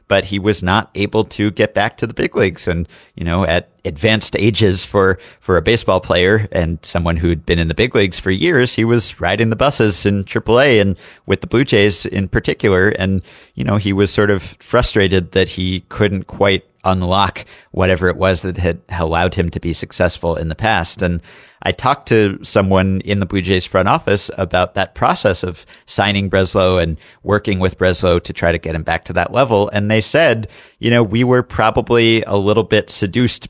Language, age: English, 50-69